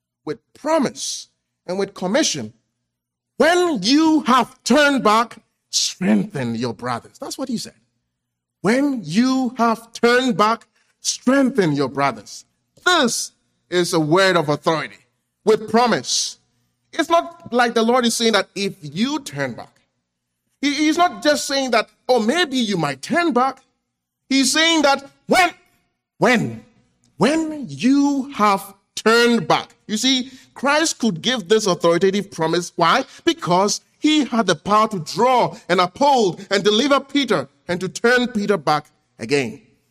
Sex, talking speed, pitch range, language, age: male, 140 wpm, 180-250 Hz, English, 40-59